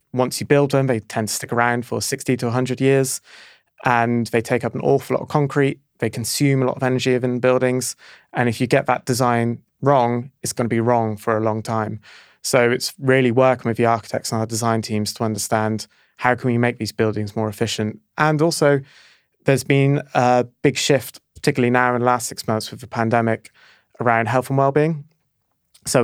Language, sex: English, male